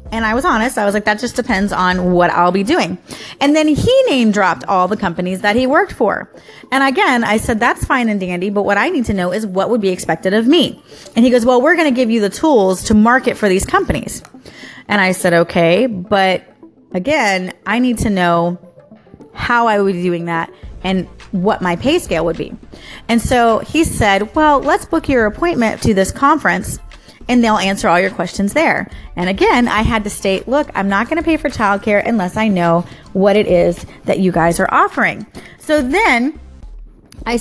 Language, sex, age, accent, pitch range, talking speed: English, female, 30-49, American, 185-250 Hz, 210 wpm